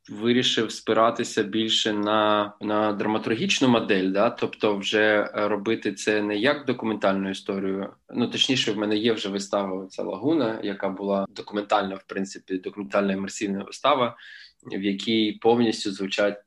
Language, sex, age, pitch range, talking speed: Ukrainian, male, 20-39, 100-115 Hz, 130 wpm